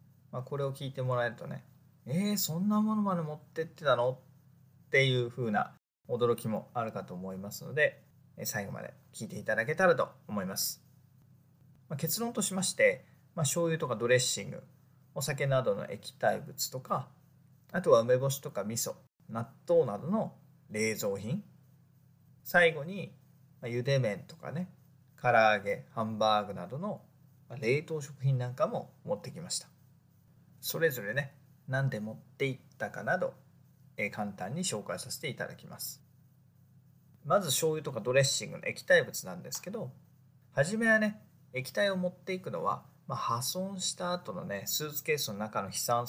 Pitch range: 130-160 Hz